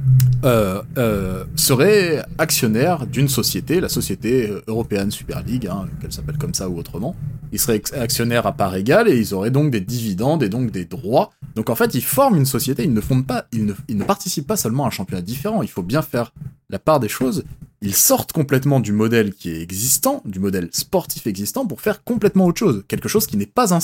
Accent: French